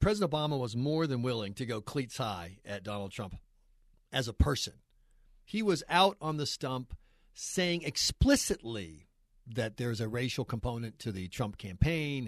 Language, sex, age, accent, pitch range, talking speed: English, male, 40-59, American, 120-170 Hz, 160 wpm